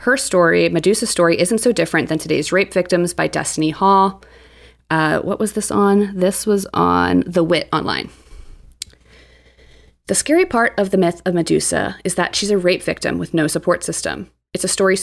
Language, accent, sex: English, American, female